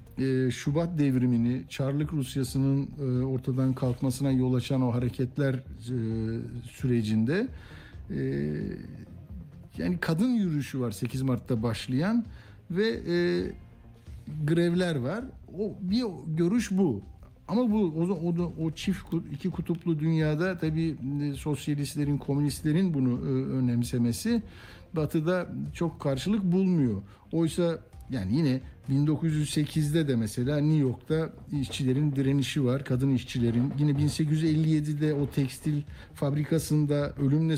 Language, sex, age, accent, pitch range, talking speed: Turkish, male, 60-79, native, 125-160 Hz, 110 wpm